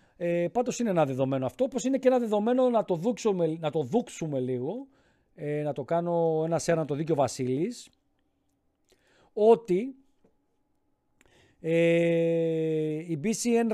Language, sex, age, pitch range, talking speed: Greek, male, 40-59, 155-225 Hz, 135 wpm